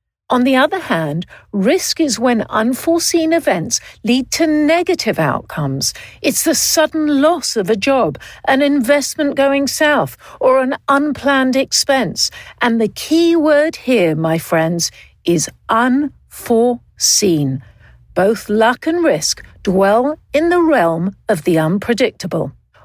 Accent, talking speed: British, 125 wpm